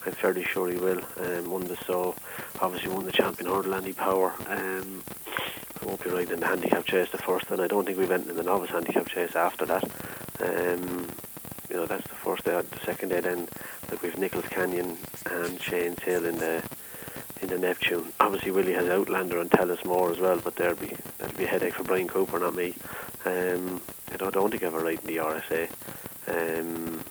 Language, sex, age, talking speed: English, male, 30-49, 215 wpm